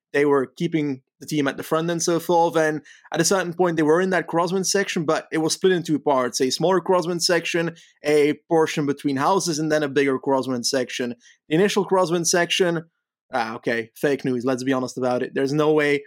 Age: 20-39